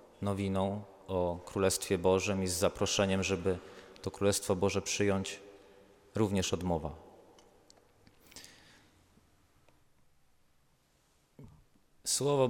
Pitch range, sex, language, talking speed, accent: 90-105 Hz, male, Polish, 70 wpm, native